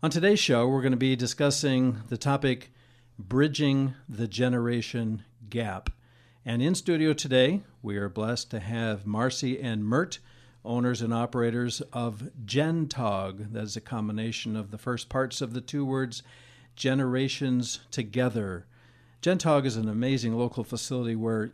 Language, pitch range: English, 115-135 Hz